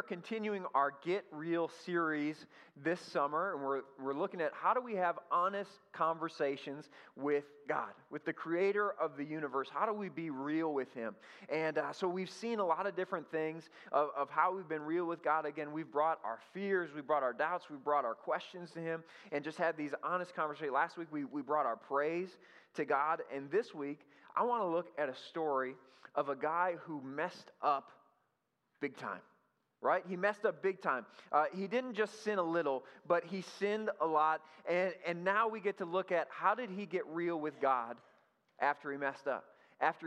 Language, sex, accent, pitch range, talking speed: English, male, American, 145-185 Hz, 205 wpm